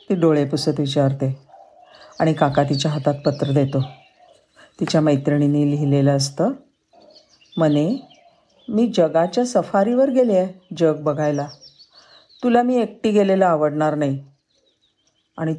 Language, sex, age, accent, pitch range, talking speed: Marathi, female, 50-69, native, 150-210 Hz, 110 wpm